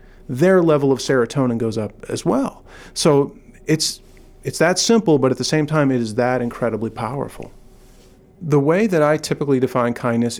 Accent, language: American, English